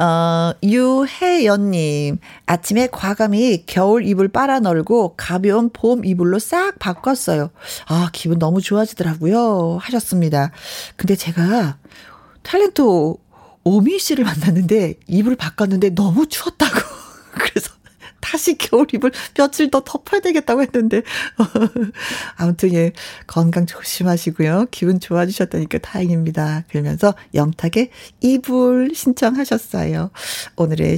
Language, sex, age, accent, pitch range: Korean, female, 40-59, native, 165-245 Hz